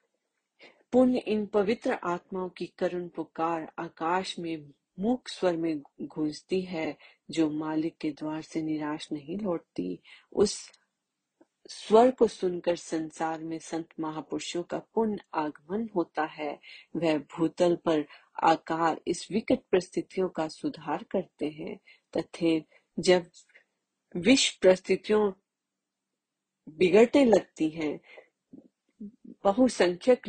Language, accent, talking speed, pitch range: Hindi, native, 105 wpm, 155-195 Hz